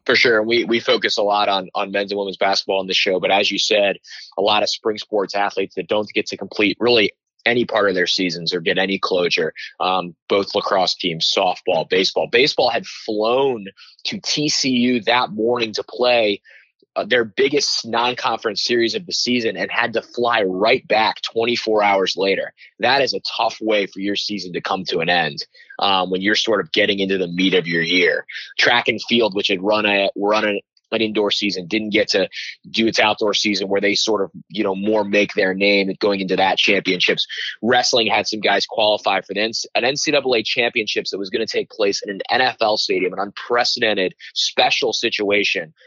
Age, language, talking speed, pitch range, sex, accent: 20-39, English, 200 wpm, 100-120 Hz, male, American